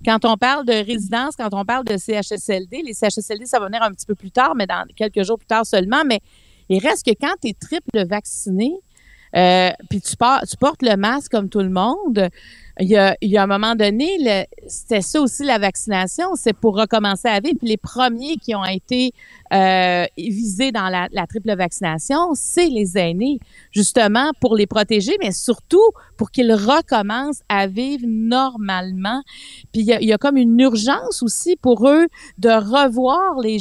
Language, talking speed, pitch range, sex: French, 190 wpm, 205-260 Hz, female